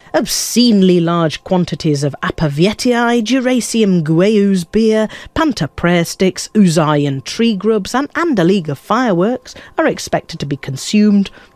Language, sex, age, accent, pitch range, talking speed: English, female, 40-59, British, 145-210 Hz, 130 wpm